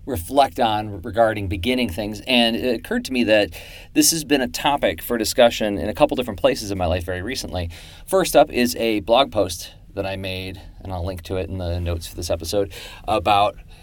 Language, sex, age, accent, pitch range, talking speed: English, male, 40-59, American, 90-120 Hz, 215 wpm